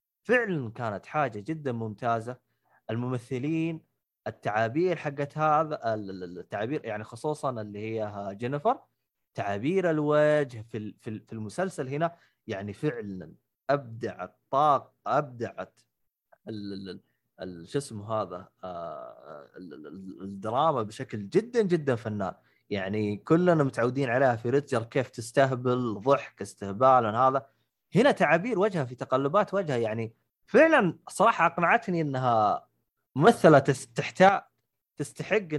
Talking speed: 100 wpm